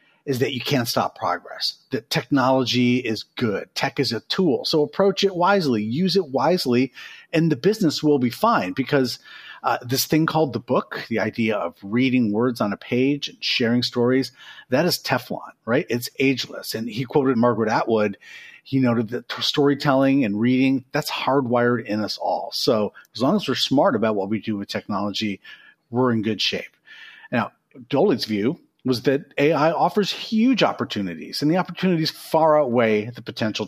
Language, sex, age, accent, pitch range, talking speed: English, male, 40-59, American, 115-150 Hz, 175 wpm